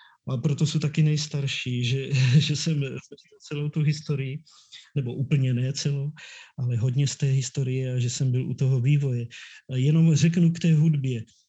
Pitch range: 125-145 Hz